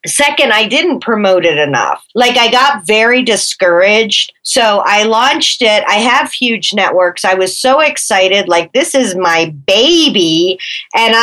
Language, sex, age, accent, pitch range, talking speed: English, female, 40-59, American, 210-270 Hz, 155 wpm